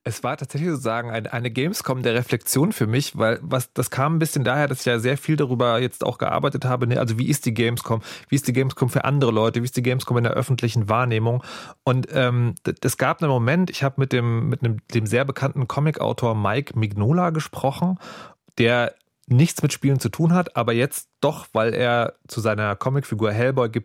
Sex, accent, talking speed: male, German, 210 wpm